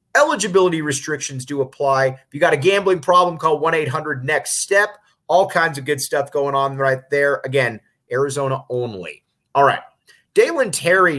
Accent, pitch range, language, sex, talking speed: American, 130-170 Hz, English, male, 150 wpm